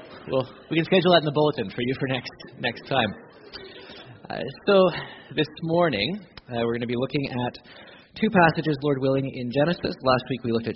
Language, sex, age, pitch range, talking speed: English, male, 30-49, 105-135 Hz, 200 wpm